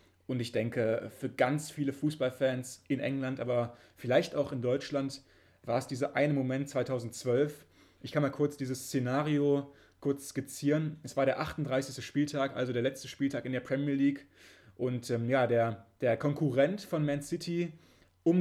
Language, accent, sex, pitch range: German, German, male, 125-150 Hz